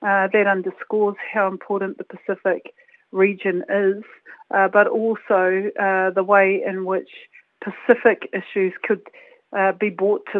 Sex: female